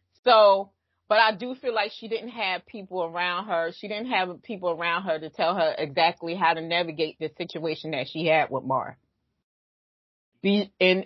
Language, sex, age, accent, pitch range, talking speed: English, female, 30-49, American, 165-215 Hz, 185 wpm